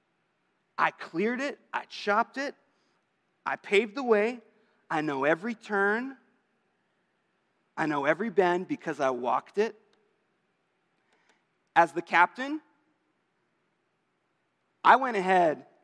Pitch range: 165-205 Hz